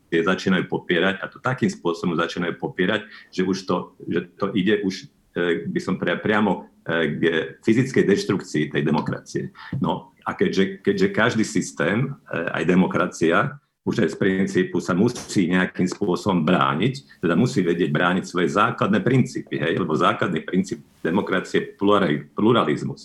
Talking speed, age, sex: 150 wpm, 50-69, male